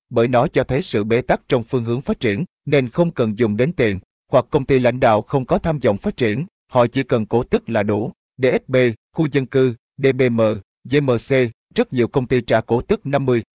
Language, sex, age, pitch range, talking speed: Vietnamese, male, 20-39, 115-135 Hz, 220 wpm